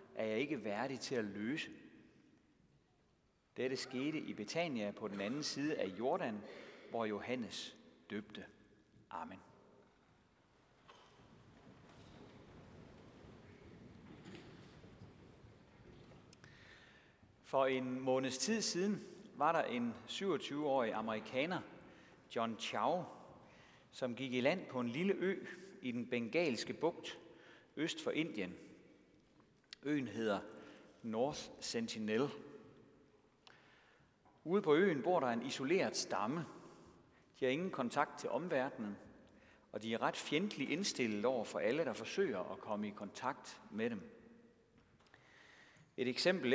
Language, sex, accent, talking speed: Danish, male, native, 110 wpm